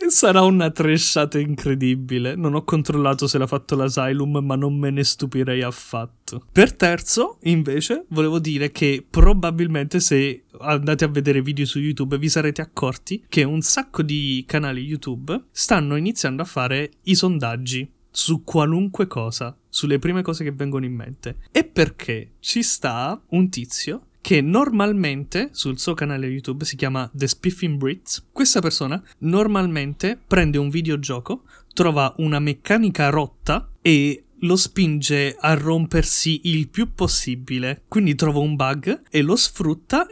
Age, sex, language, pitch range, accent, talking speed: 20-39, male, Italian, 135-175 Hz, native, 145 wpm